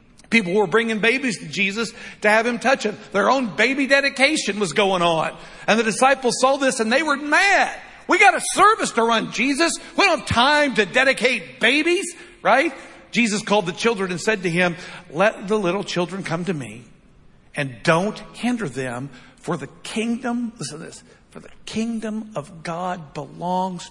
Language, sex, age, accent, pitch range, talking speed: English, male, 60-79, American, 150-225 Hz, 185 wpm